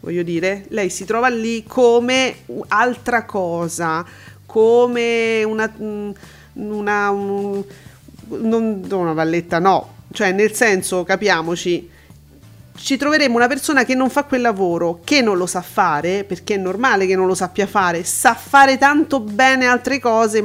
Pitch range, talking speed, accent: 185-245 Hz, 140 wpm, native